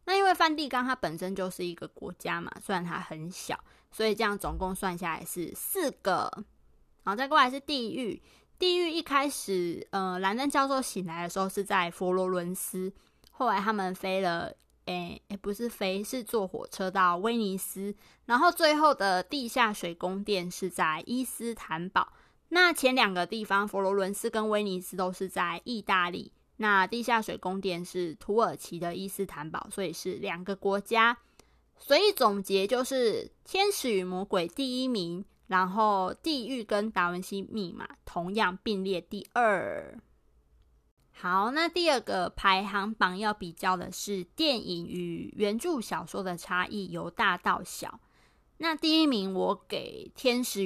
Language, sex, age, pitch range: Chinese, female, 20-39, 180-240 Hz